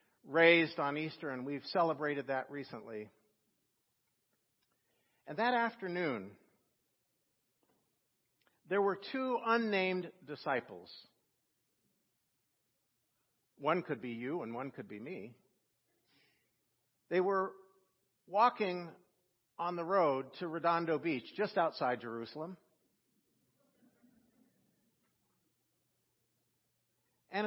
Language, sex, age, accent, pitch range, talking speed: English, male, 50-69, American, 145-195 Hz, 85 wpm